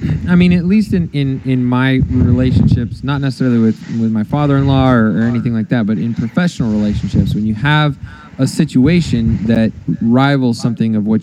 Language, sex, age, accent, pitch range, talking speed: English, male, 20-39, American, 115-140 Hz, 180 wpm